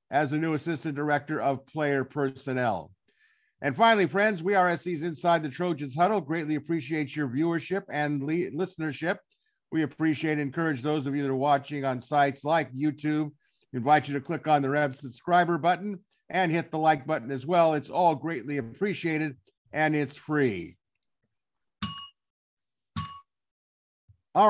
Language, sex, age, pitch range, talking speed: English, male, 50-69, 145-180 Hz, 150 wpm